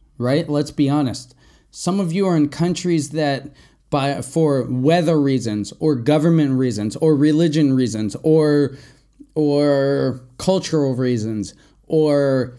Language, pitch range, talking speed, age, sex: English, 135-165 Hz, 125 wpm, 20-39, male